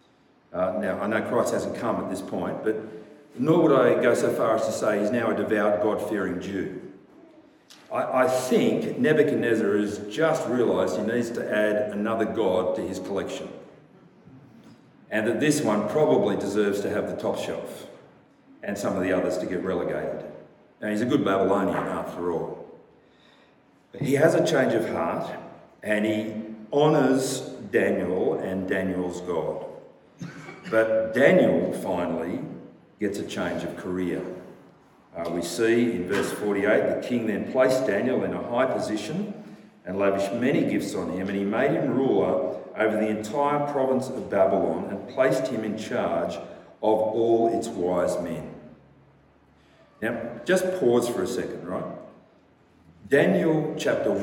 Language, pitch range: English, 100-120 Hz